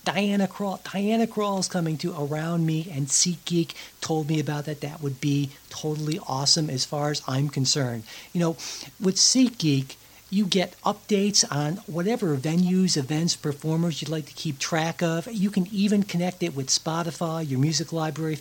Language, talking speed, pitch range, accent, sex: English, 170 wpm, 145-180 Hz, American, male